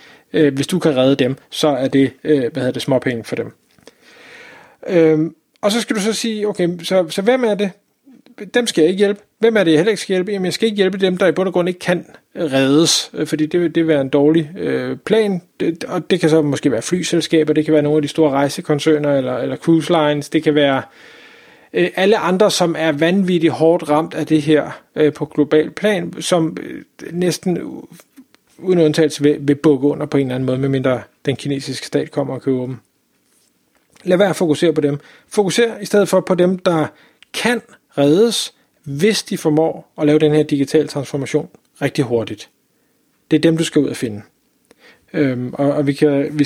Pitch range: 145-180 Hz